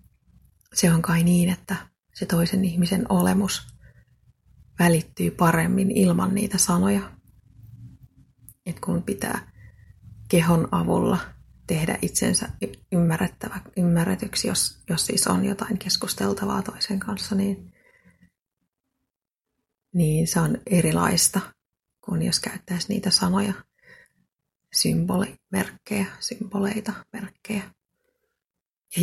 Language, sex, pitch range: Finnish, female, 165-200 Hz